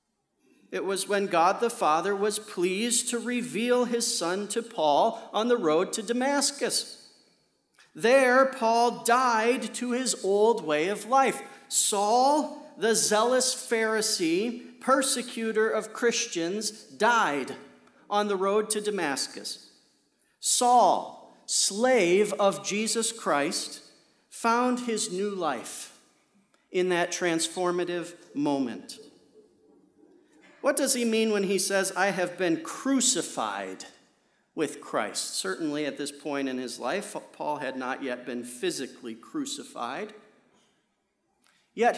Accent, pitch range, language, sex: American, 195-245 Hz, English, male